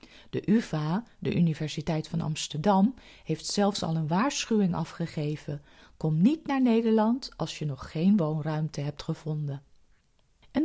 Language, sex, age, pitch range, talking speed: Dutch, female, 40-59, 155-210 Hz, 135 wpm